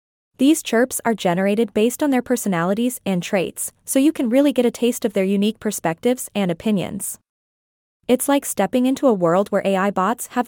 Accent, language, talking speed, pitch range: American, English, 190 wpm, 200-255 Hz